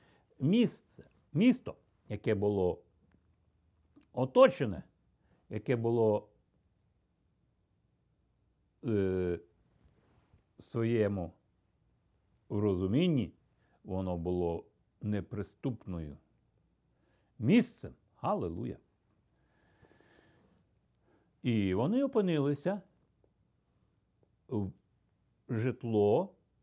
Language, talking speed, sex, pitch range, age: Ukrainian, 45 wpm, male, 100-165 Hz, 60-79